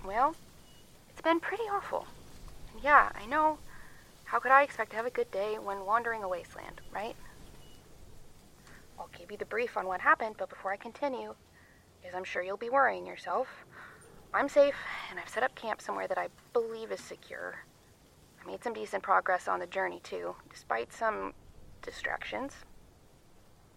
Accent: American